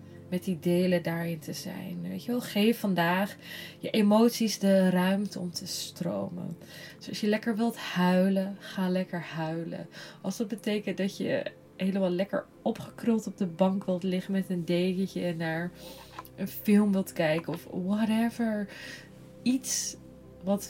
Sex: female